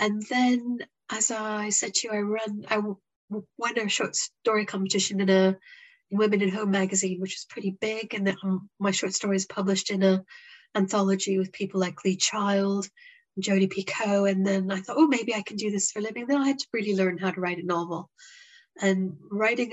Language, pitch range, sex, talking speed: English, 190-220 Hz, female, 205 wpm